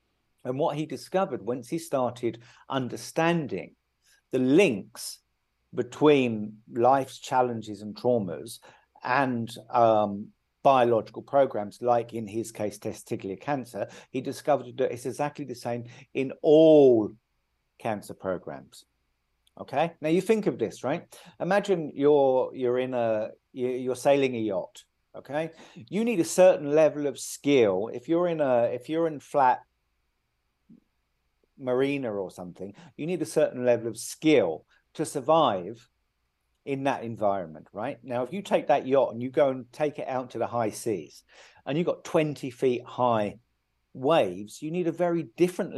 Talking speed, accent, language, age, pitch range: 150 wpm, British, English, 50-69, 115-150 Hz